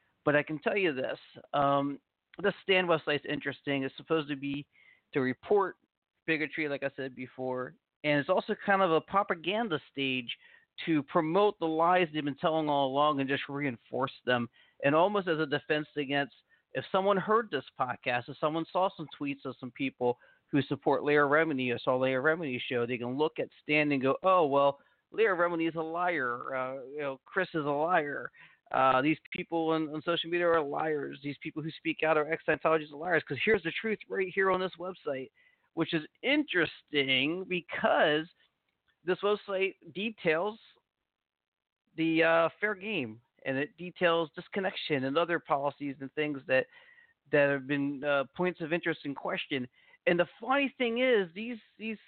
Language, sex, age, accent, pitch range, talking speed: English, male, 40-59, American, 140-185 Hz, 180 wpm